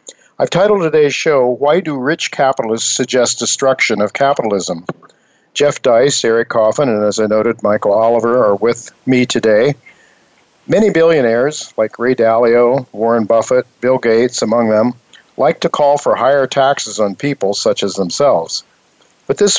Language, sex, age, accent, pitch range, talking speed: English, male, 50-69, American, 115-140 Hz, 155 wpm